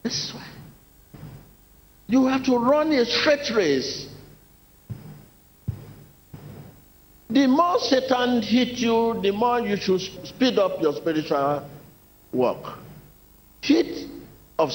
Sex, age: male, 50-69